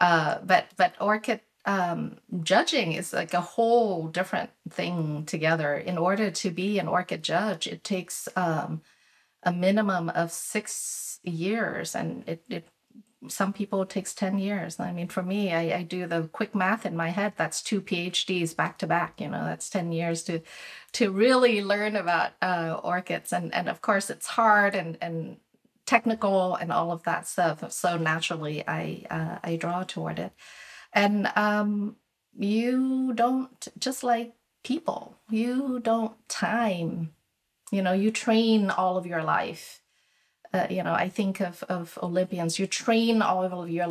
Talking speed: 165 wpm